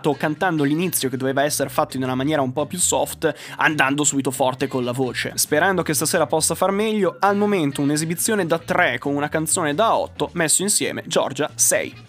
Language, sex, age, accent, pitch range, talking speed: Italian, male, 20-39, native, 140-185 Hz, 195 wpm